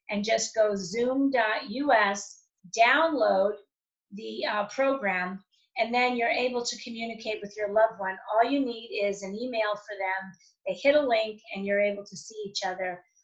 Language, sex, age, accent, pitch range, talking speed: English, female, 40-59, American, 195-240 Hz, 170 wpm